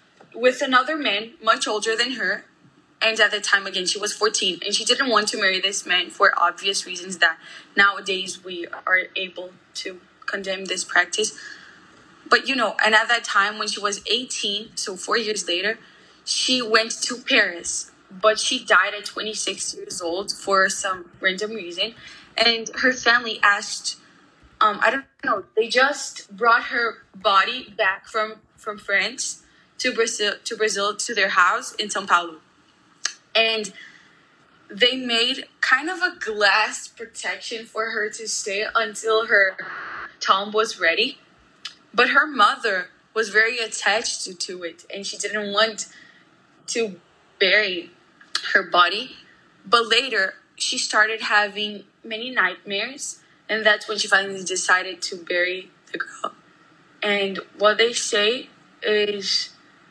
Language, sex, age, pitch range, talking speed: English, female, 10-29, 195-230 Hz, 145 wpm